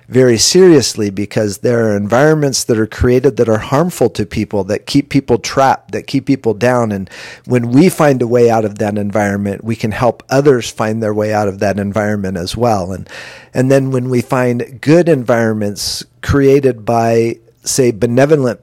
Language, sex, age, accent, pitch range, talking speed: English, male, 40-59, American, 110-135 Hz, 185 wpm